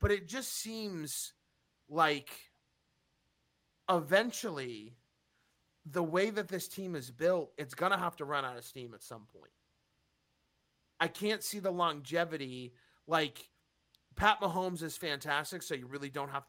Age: 30-49